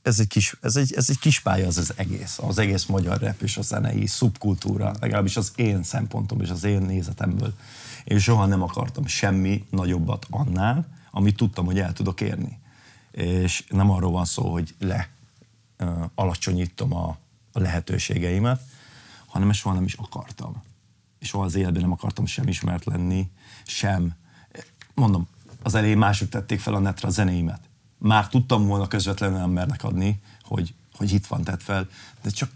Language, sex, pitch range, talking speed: Hungarian, male, 95-120 Hz, 170 wpm